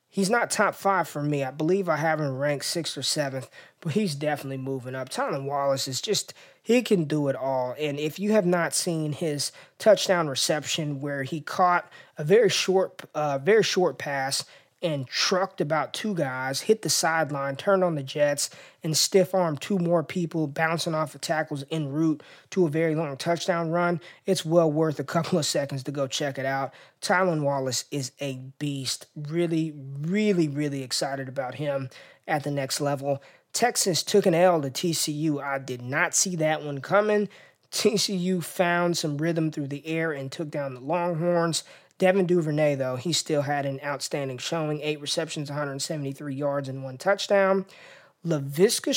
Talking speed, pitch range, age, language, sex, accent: 180 wpm, 140-175 Hz, 20-39, English, male, American